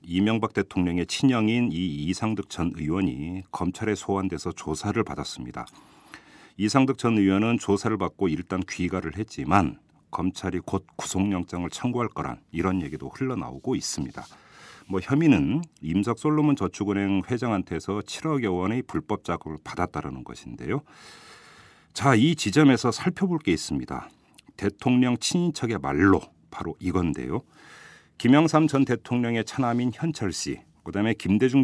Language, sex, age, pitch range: Korean, male, 40-59, 90-120 Hz